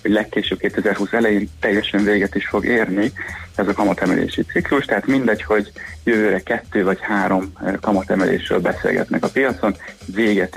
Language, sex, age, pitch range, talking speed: Hungarian, male, 30-49, 100-110 Hz, 140 wpm